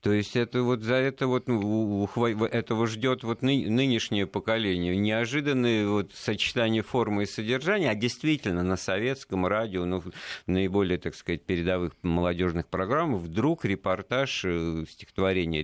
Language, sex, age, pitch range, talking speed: Russian, male, 50-69, 90-115 Hz, 125 wpm